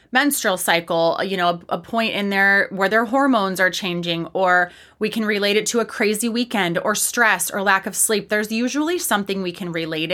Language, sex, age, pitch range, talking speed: English, female, 30-49, 185-225 Hz, 205 wpm